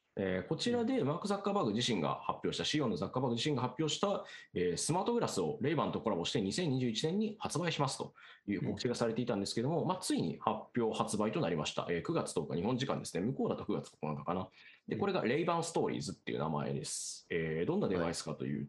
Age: 20-39